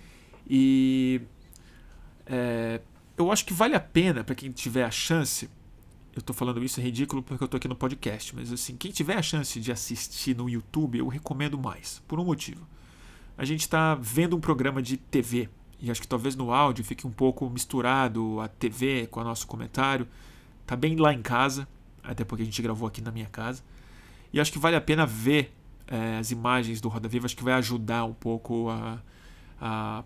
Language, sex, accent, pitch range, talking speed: Portuguese, male, Brazilian, 115-135 Hz, 195 wpm